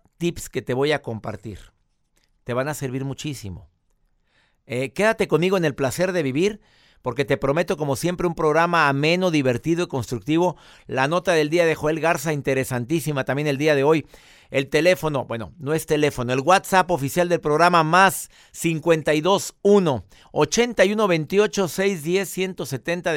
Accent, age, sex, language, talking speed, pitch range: Mexican, 50-69, male, Spanish, 145 wpm, 130-170 Hz